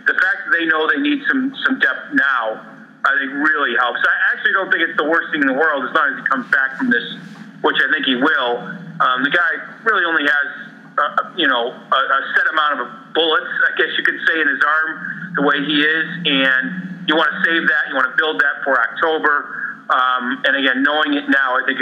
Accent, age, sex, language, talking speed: American, 40-59, male, English, 240 wpm